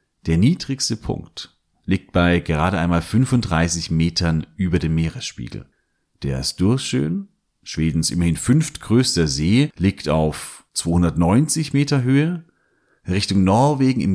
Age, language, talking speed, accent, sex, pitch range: 40-59, German, 115 wpm, German, male, 80-110 Hz